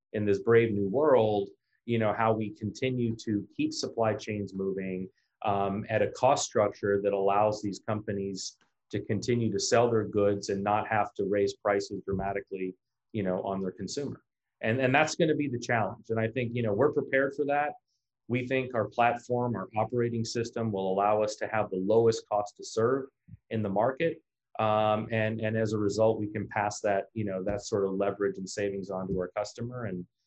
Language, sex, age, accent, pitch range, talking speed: English, male, 30-49, American, 100-115 Hz, 200 wpm